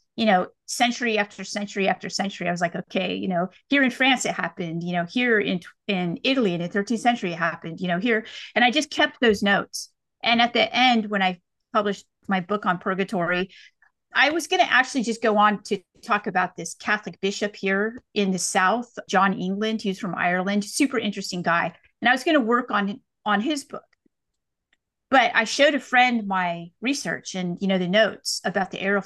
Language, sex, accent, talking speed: English, female, American, 210 wpm